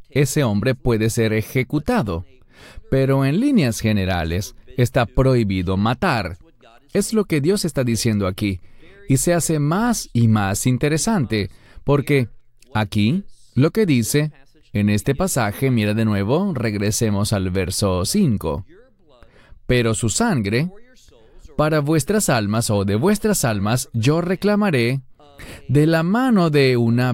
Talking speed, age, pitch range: 130 wpm, 30-49, 105-165 Hz